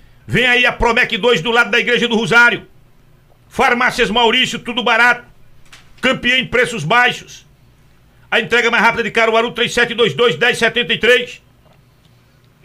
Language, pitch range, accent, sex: Portuguese, 220-260 Hz, Brazilian, male